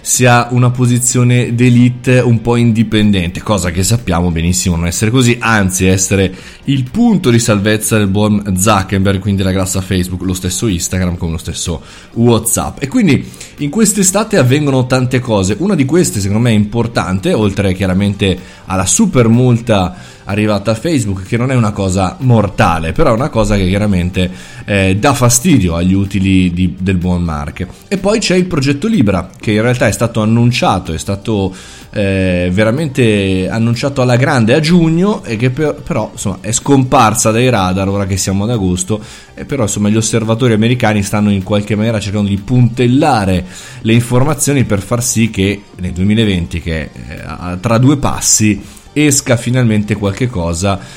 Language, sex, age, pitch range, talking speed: Italian, male, 20-39, 95-125 Hz, 165 wpm